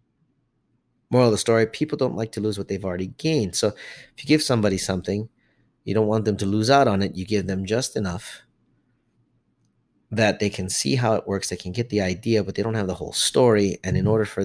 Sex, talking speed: male, 235 wpm